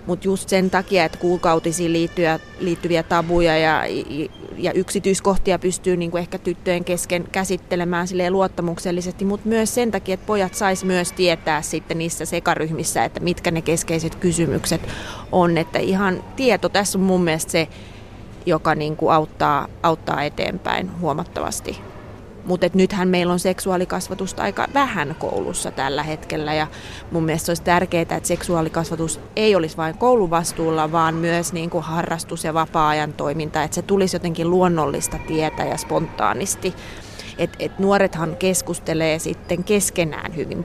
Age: 30-49